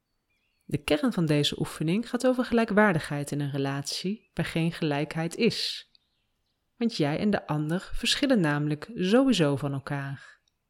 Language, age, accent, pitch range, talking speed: Dutch, 30-49, Dutch, 155-225 Hz, 140 wpm